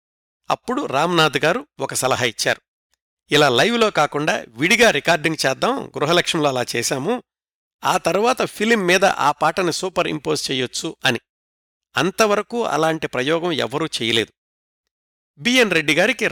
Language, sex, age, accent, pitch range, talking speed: Telugu, male, 60-79, native, 130-175 Hz, 120 wpm